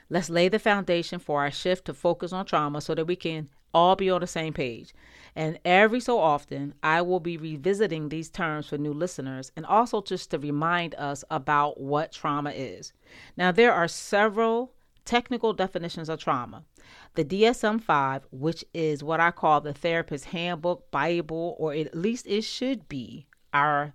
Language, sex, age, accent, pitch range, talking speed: English, female, 40-59, American, 150-190 Hz, 175 wpm